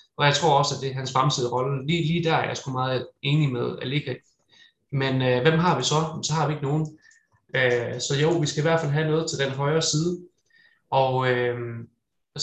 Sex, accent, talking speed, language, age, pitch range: male, native, 225 wpm, Danish, 20-39, 125-155 Hz